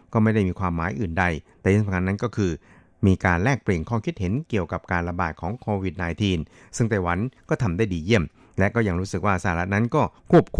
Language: Thai